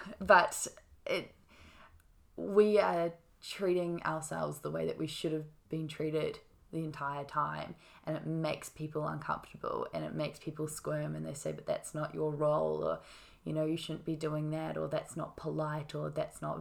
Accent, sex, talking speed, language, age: Australian, female, 180 wpm, English, 10-29